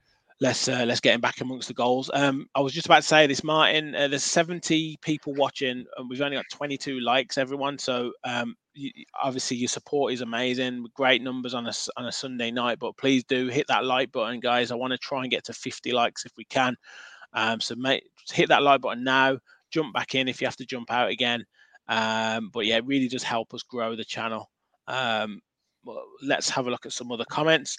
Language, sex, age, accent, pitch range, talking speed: English, male, 20-39, British, 120-145 Hz, 230 wpm